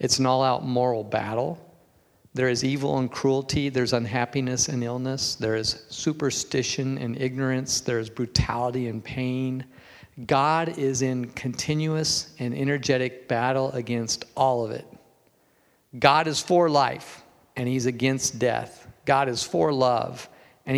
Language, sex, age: English, male, 50-69